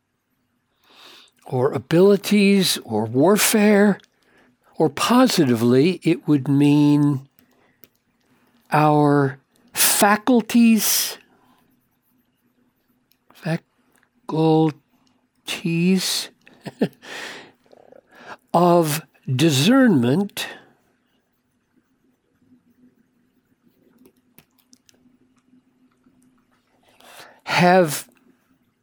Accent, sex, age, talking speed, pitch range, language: American, male, 60-79, 30 wpm, 145-220 Hz, English